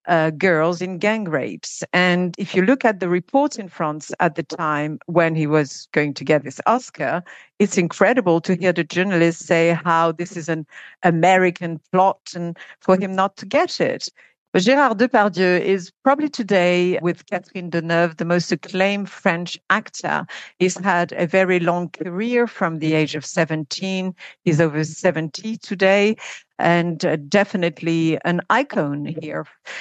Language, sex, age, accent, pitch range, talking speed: English, female, 50-69, French, 170-205 Hz, 160 wpm